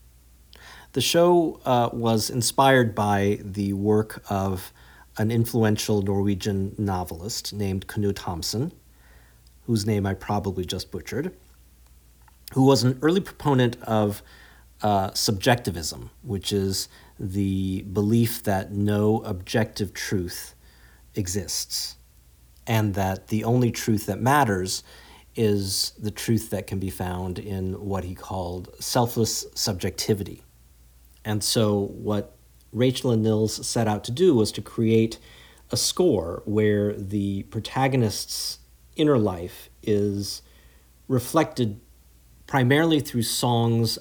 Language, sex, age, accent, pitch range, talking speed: English, male, 40-59, American, 90-115 Hz, 115 wpm